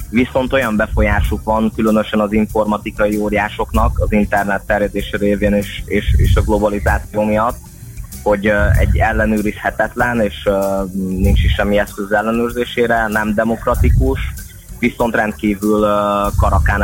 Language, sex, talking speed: Hungarian, male, 115 wpm